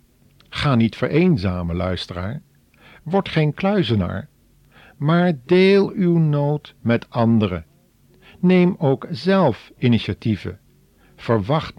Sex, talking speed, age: male, 90 wpm, 50-69